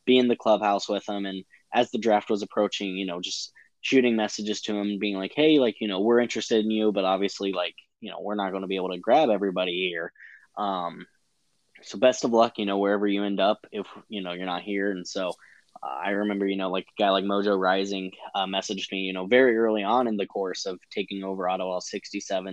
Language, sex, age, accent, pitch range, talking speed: English, male, 10-29, American, 95-110 Hz, 235 wpm